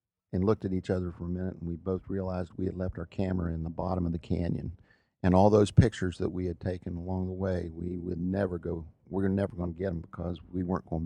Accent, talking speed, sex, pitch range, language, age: American, 260 wpm, male, 90-100 Hz, English, 50-69